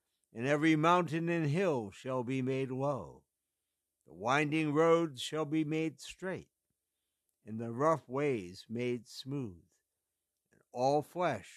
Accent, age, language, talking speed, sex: American, 60-79, English, 130 wpm, male